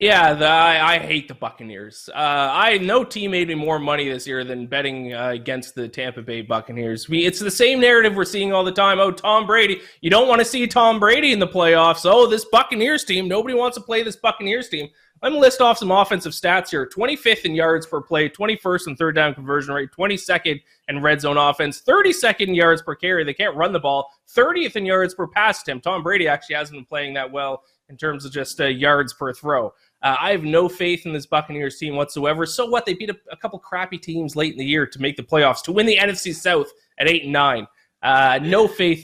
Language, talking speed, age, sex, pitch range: English, 230 wpm, 20-39, male, 140-200 Hz